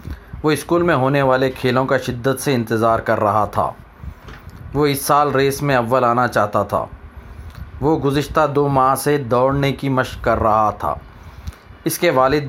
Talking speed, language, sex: 200 wpm, Telugu, male